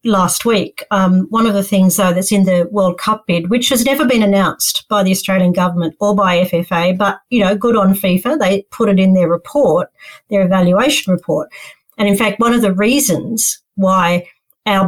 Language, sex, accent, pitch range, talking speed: English, female, Australian, 185-220 Hz, 200 wpm